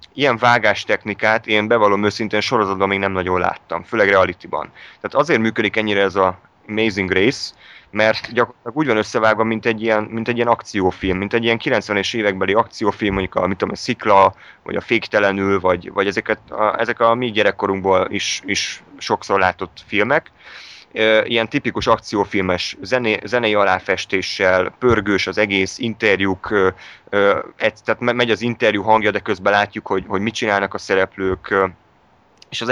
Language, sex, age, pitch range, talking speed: Hungarian, male, 30-49, 95-115 Hz, 160 wpm